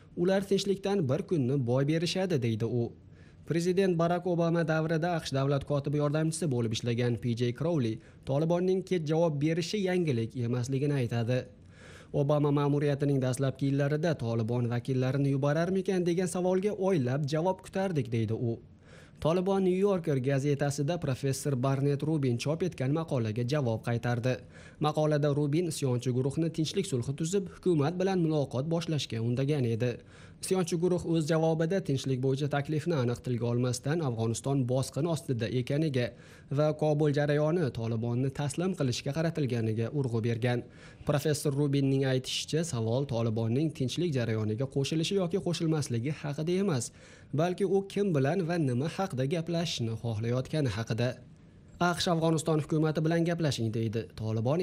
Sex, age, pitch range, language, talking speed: male, 30-49, 125-165 Hz, English, 125 wpm